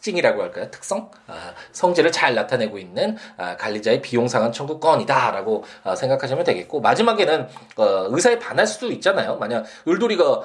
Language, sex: Korean, male